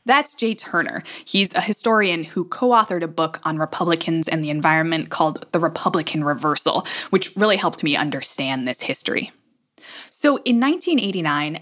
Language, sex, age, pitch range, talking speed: English, female, 20-39, 165-235 Hz, 150 wpm